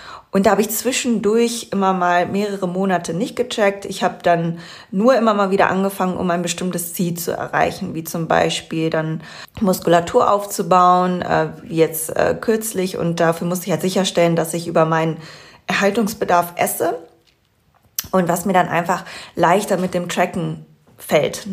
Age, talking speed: 20-39, 155 wpm